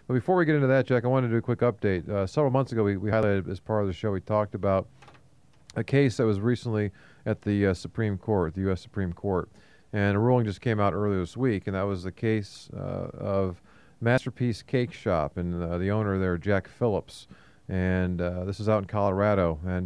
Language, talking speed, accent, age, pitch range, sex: English, 230 wpm, American, 40-59, 95-115 Hz, male